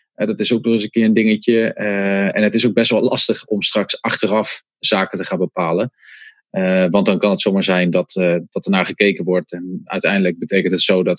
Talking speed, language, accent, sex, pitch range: 230 wpm, English, Dutch, male, 95-120 Hz